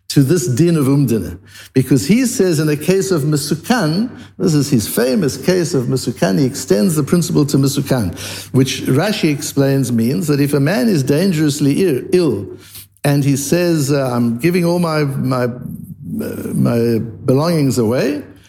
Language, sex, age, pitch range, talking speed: English, male, 60-79, 120-165 Hz, 155 wpm